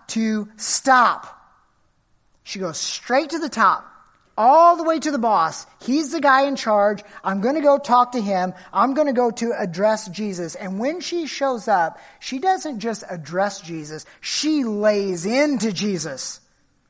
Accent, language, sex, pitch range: American, English, male, 190-285 Hz